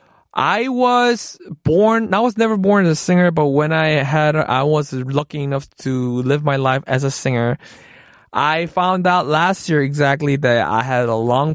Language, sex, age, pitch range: Korean, male, 20-39, 130-175 Hz